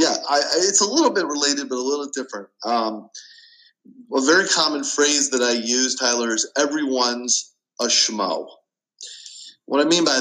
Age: 30-49